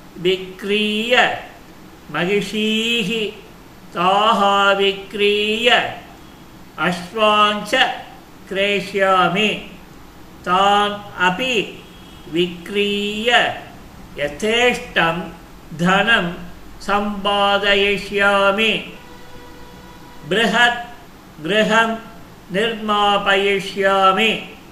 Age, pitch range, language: 50-69, 195-225 Hz, Tamil